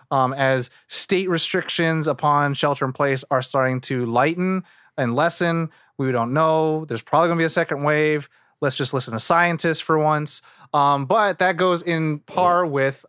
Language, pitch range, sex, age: English, 130-165 Hz, male, 30-49